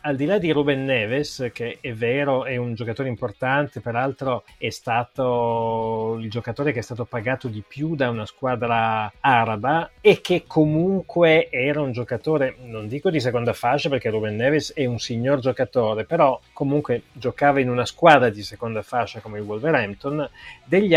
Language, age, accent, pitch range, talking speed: Italian, 30-49, native, 115-145 Hz, 170 wpm